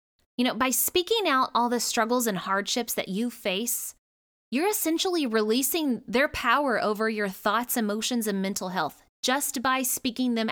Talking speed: 165 wpm